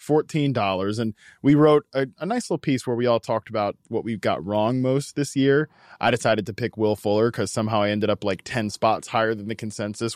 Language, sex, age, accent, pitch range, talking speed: English, male, 20-39, American, 110-145 Hz, 230 wpm